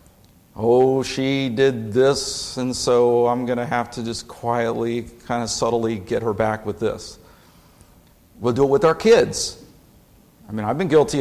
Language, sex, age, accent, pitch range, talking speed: English, male, 50-69, American, 110-140 Hz, 170 wpm